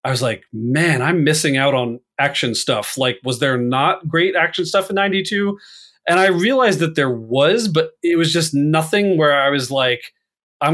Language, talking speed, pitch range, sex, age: English, 195 wpm, 130-150 Hz, male, 30-49